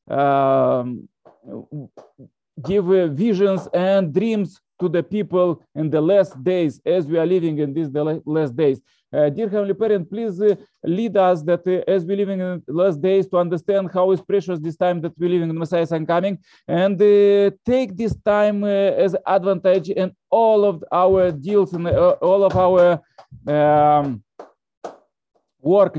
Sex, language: male, English